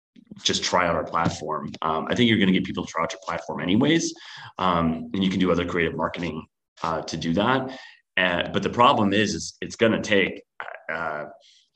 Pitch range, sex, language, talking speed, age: 85-100 Hz, male, English, 215 wpm, 30-49